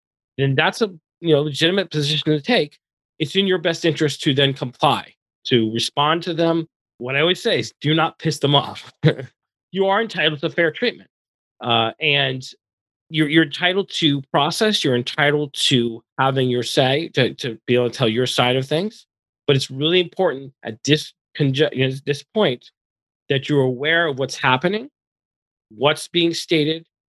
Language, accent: English, American